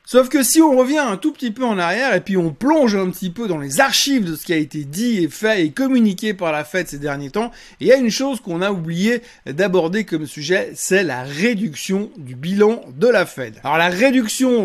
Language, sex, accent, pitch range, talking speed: French, male, French, 160-225 Hz, 240 wpm